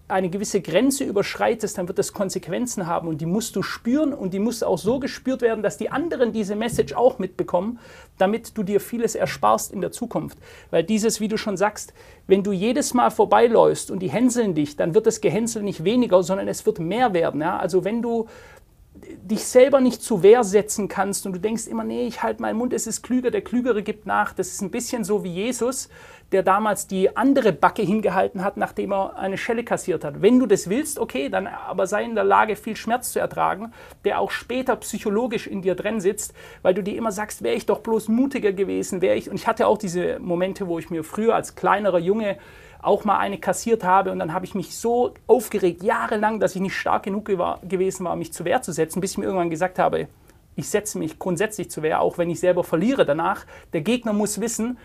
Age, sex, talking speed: 40-59, male, 225 wpm